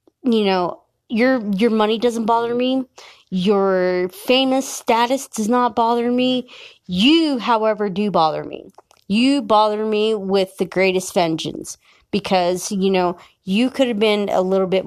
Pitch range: 185-250 Hz